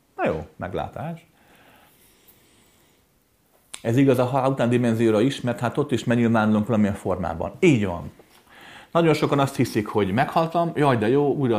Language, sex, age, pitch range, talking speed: Hungarian, male, 30-49, 100-135 Hz, 155 wpm